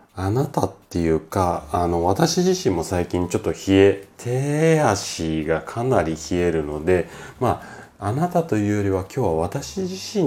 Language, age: Japanese, 40-59